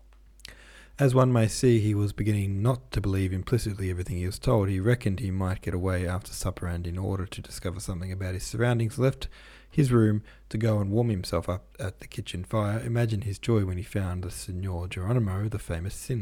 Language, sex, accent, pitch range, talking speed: English, male, Australian, 95-120 Hz, 205 wpm